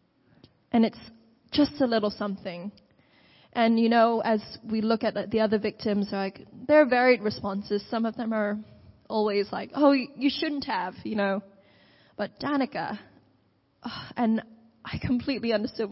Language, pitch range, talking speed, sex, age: English, 210-250 Hz, 145 wpm, female, 20-39